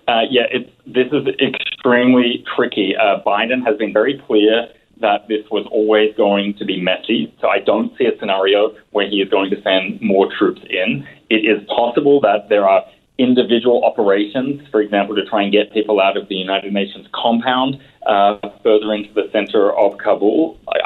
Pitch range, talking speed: 100-125 Hz, 185 wpm